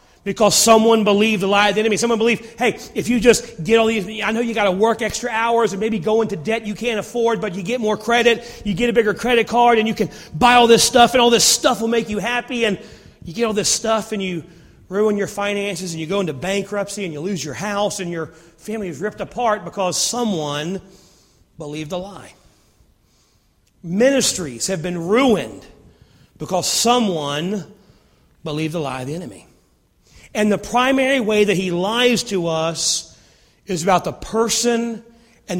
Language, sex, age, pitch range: English, male, 40-59, 180-230 Hz